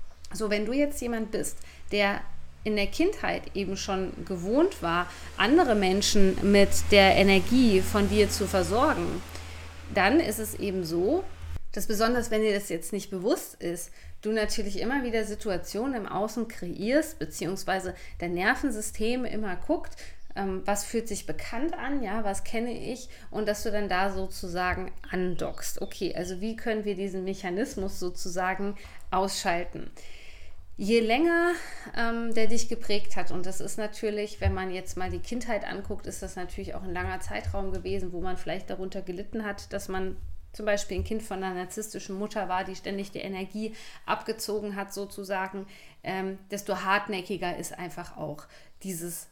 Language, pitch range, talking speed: German, 185-220 Hz, 160 wpm